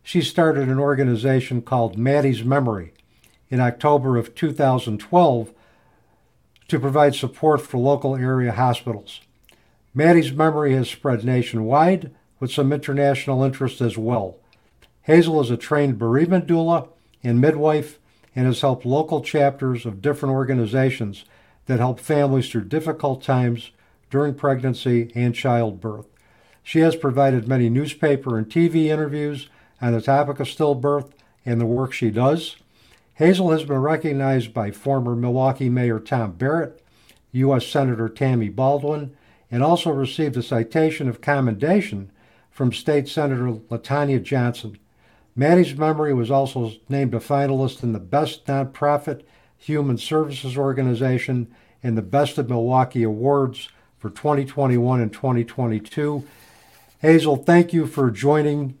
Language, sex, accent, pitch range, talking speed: English, male, American, 115-145 Hz, 130 wpm